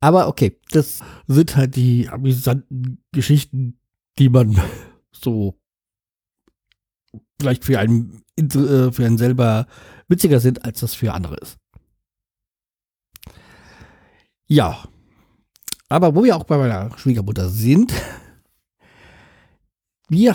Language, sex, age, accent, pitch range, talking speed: German, male, 50-69, German, 115-150 Hz, 100 wpm